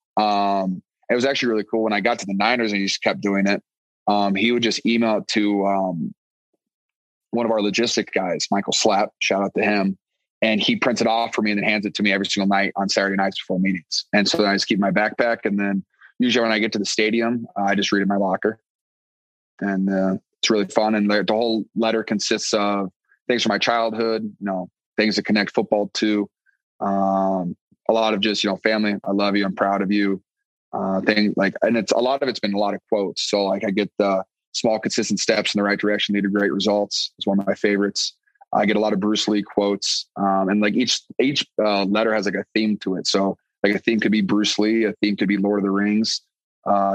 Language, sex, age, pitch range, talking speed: English, male, 30-49, 100-110 Hz, 245 wpm